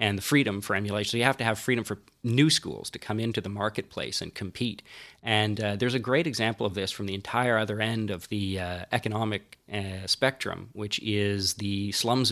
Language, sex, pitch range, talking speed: English, male, 105-130 Hz, 215 wpm